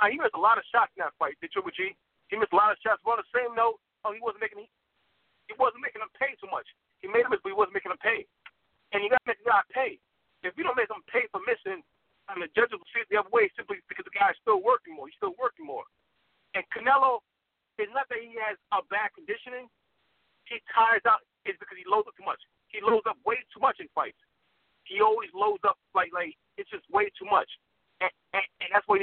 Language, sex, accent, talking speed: English, male, American, 265 wpm